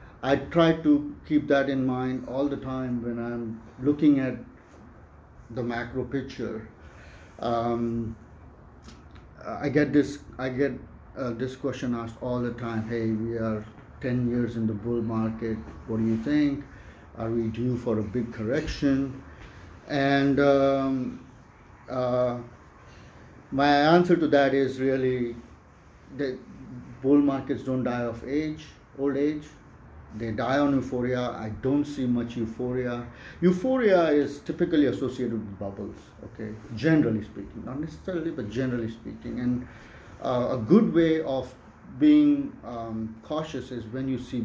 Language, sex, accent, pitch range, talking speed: English, male, Indian, 115-140 Hz, 140 wpm